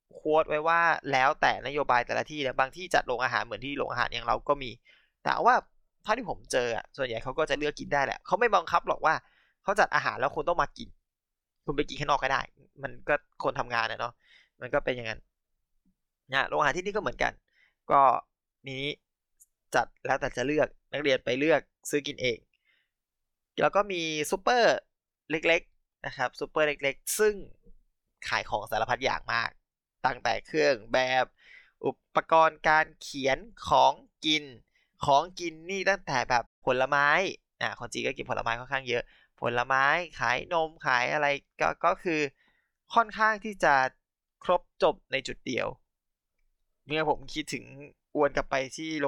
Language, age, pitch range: Thai, 20-39, 130-155 Hz